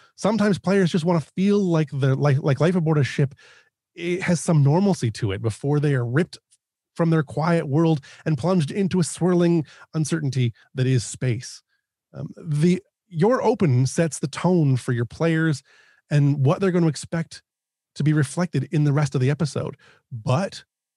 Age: 30-49